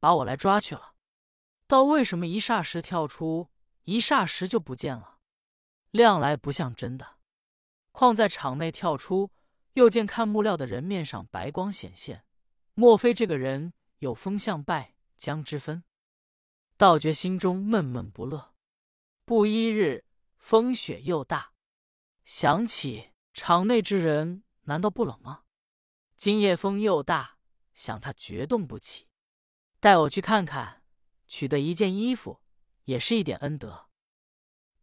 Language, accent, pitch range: Chinese, native, 145-215 Hz